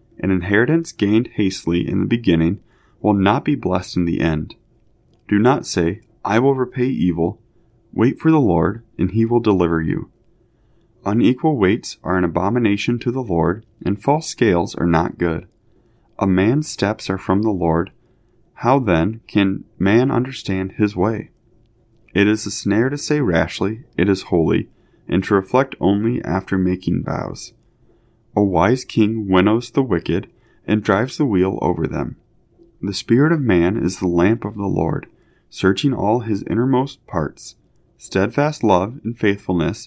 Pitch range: 90-120 Hz